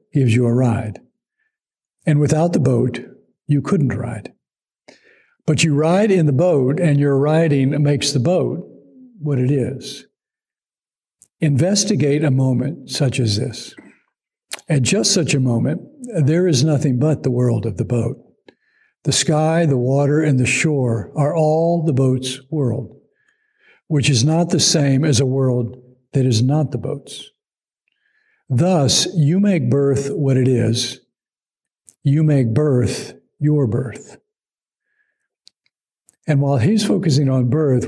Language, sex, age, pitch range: English, male, 60-79, 125-155 Hz